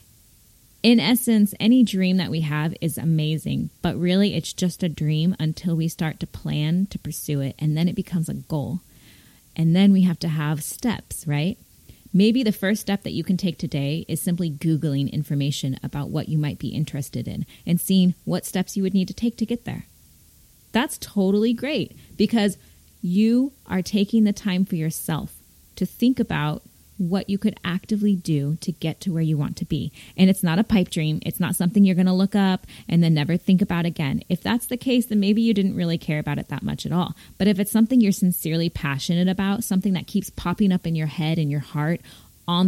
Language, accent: English, American